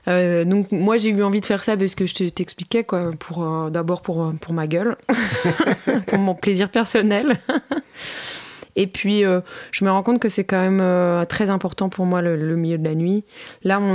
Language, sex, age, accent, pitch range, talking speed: French, female, 20-39, French, 160-195 Hz, 205 wpm